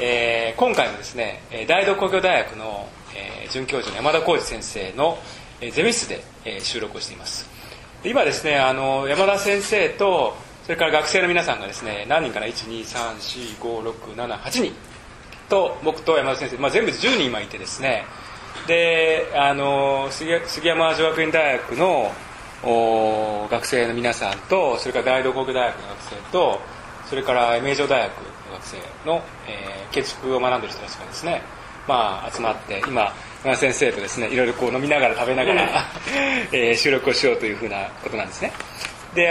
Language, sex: Japanese, male